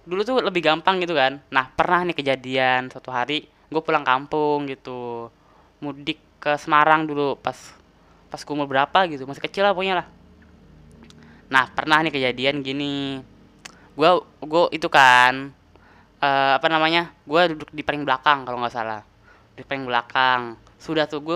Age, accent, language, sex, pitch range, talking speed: 10-29, native, Indonesian, female, 125-155 Hz, 150 wpm